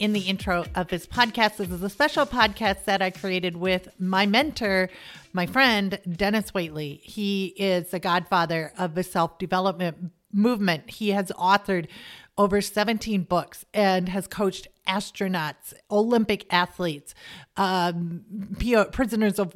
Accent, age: American, 40-59